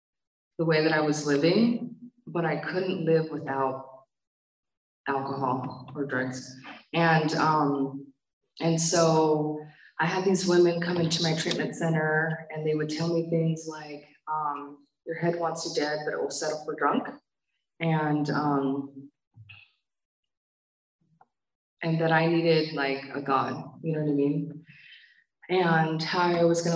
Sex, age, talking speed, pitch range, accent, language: female, 20-39, 145 wpm, 145-165 Hz, American, English